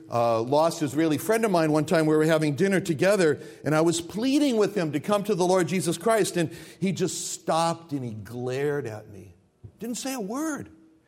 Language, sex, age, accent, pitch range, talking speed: English, male, 60-79, American, 120-190 Hz, 210 wpm